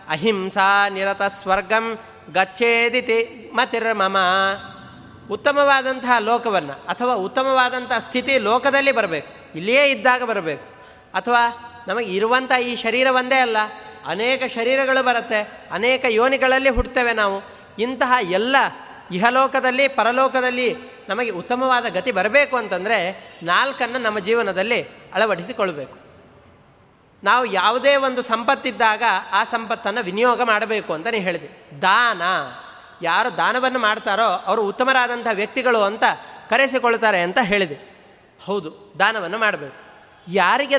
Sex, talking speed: male, 100 wpm